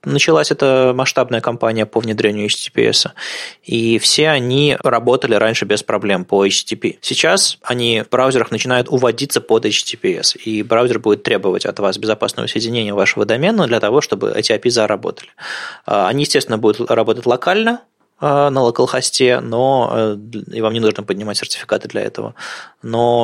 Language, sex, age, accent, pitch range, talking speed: Russian, male, 20-39, native, 110-130 Hz, 145 wpm